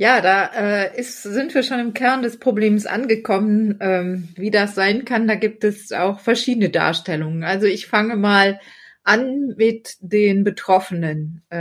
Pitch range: 175-210 Hz